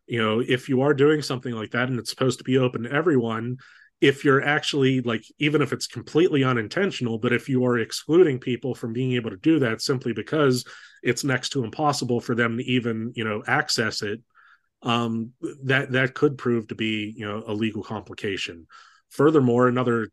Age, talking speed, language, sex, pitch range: 30-49, 195 wpm, English, male, 110-130 Hz